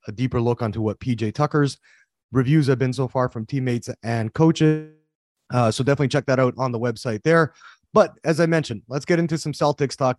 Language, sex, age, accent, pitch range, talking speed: English, male, 30-49, American, 125-155 Hz, 210 wpm